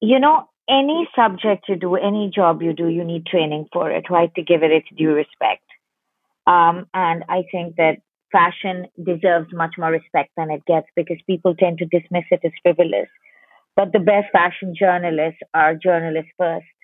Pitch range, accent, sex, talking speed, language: 180-215 Hz, Indian, female, 180 wpm, English